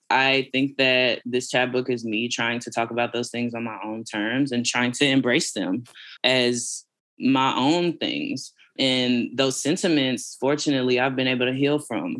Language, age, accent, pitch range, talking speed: English, 10-29, American, 120-135 Hz, 180 wpm